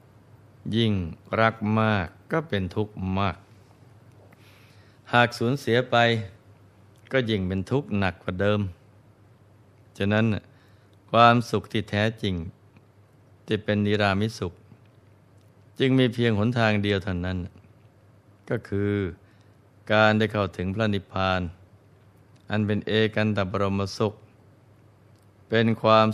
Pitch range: 100-110 Hz